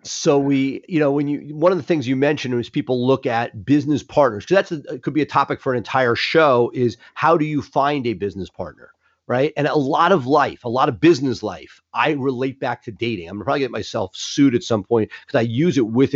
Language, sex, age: English, male, 40-59